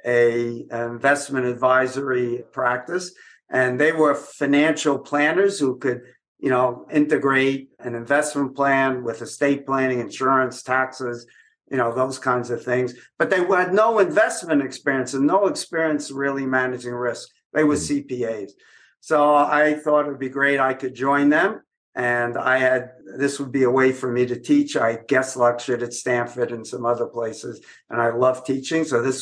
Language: English